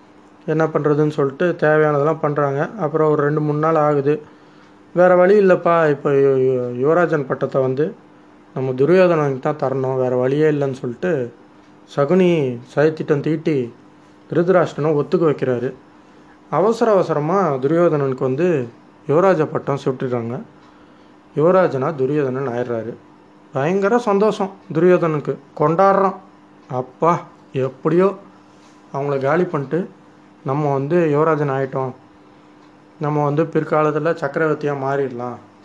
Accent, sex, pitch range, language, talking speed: native, male, 125-165 Hz, Tamil, 100 wpm